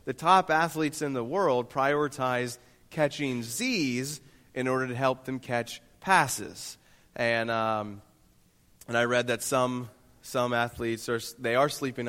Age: 30-49